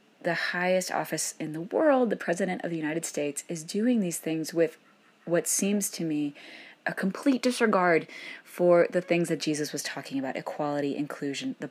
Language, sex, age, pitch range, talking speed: English, female, 20-39, 155-195 Hz, 180 wpm